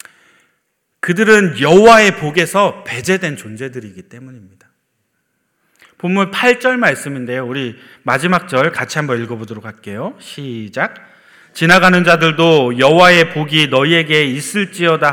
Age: 40-59